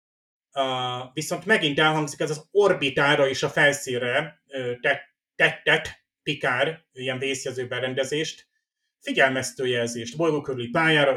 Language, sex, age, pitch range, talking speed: Hungarian, male, 30-49, 125-155 Hz, 100 wpm